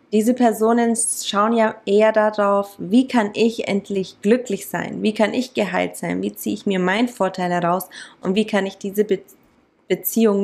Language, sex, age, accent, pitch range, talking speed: German, female, 20-39, German, 190-230 Hz, 170 wpm